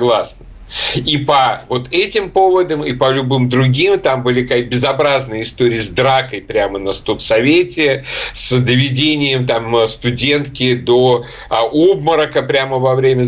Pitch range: 125-155 Hz